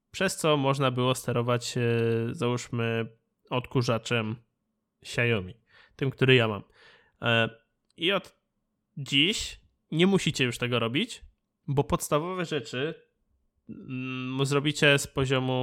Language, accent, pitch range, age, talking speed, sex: Polish, native, 120-145 Hz, 20-39, 100 wpm, male